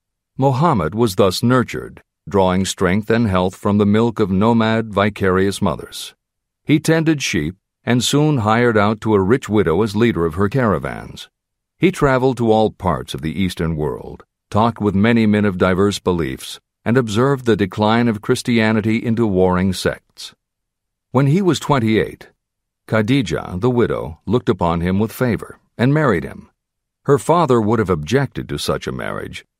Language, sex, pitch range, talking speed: English, male, 95-125 Hz, 160 wpm